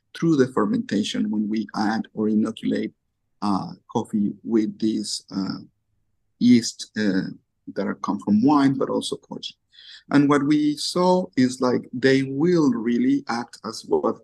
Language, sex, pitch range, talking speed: English, male, 115-180 Hz, 150 wpm